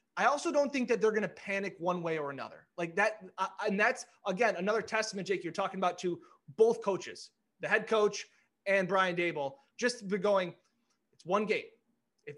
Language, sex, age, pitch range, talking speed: English, male, 20-39, 190-240 Hz, 190 wpm